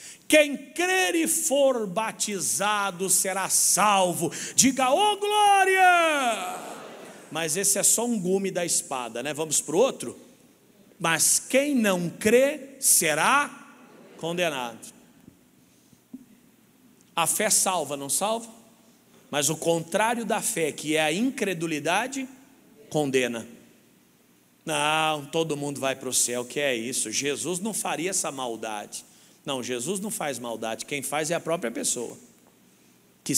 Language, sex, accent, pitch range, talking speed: English, male, Brazilian, 145-225 Hz, 130 wpm